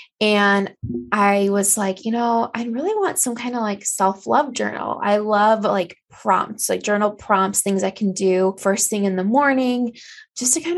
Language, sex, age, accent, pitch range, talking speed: English, female, 20-39, American, 195-225 Hz, 190 wpm